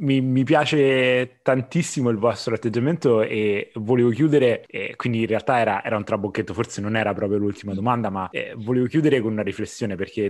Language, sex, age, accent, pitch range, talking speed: Italian, male, 20-39, native, 100-120 Hz, 185 wpm